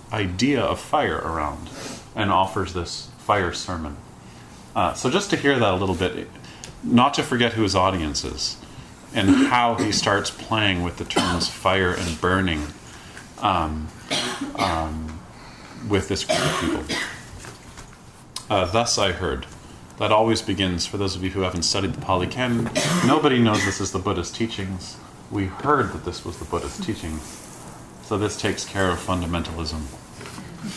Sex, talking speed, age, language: male, 160 wpm, 30-49, English